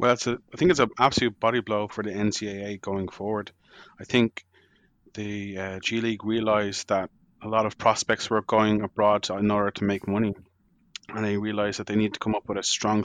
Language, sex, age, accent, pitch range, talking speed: English, male, 20-39, Irish, 100-110 Hz, 215 wpm